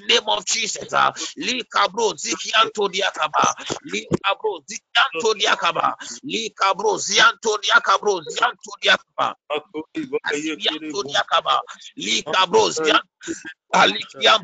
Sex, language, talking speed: male, English, 85 wpm